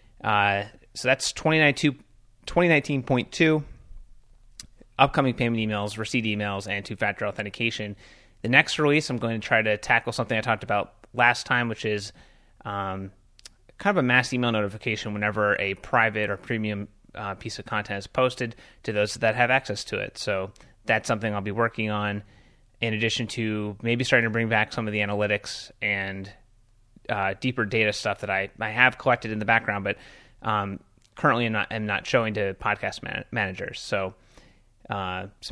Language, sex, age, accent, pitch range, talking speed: English, male, 30-49, American, 105-120 Hz, 170 wpm